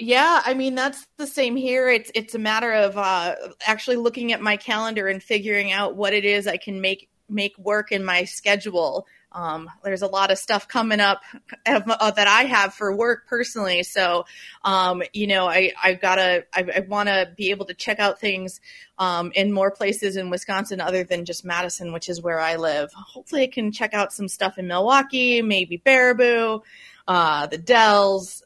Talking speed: 195 wpm